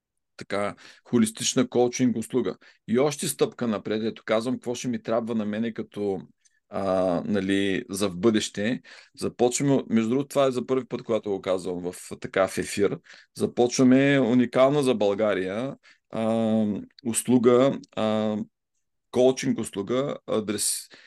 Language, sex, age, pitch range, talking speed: Bulgarian, male, 40-59, 105-120 Hz, 130 wpm